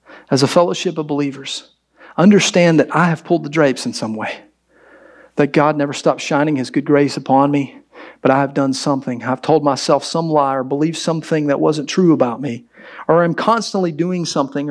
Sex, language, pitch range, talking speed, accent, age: male, English, 155-220 Hz, 195 wpm, American, 40-59